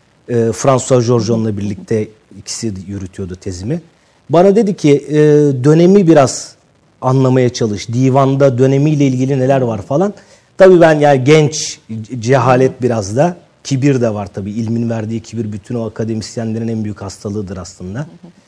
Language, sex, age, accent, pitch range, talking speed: Turkish, male, 40-59, native, 115-145 Hz, 130 wpm